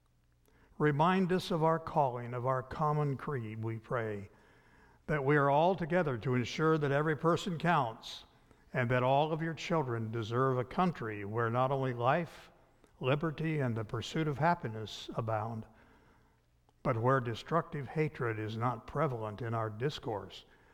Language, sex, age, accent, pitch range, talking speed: English, male, 60-79, American, 115-150 Hz, 150 wpm